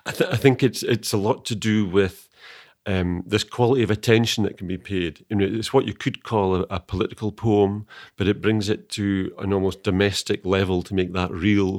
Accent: British